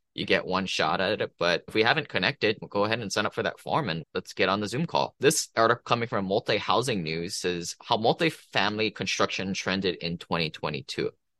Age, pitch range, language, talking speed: 20-39, 90-115 Hz, English, 215 wpm